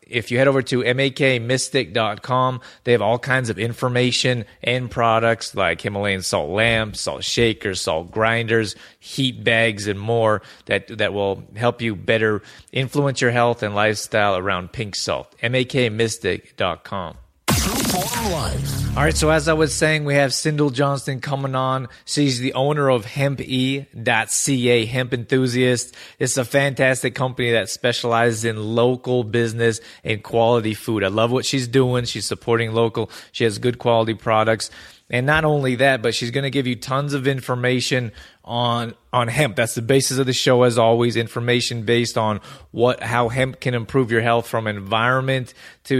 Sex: male